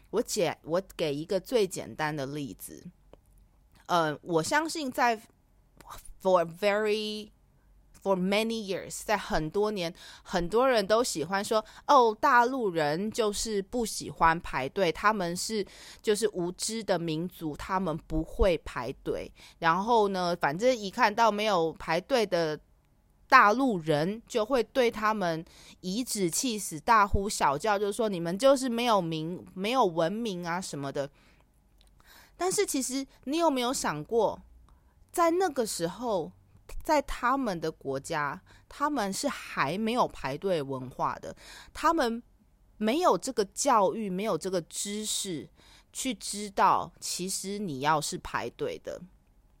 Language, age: English, 20-39